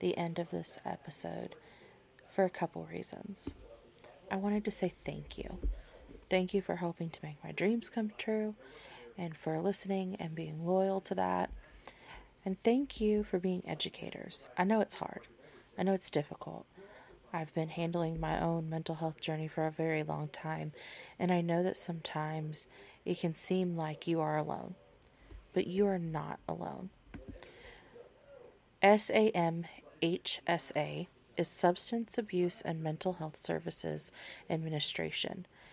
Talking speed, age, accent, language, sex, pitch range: 150 wpm, 20-39, American, English, female, 155-190 Hz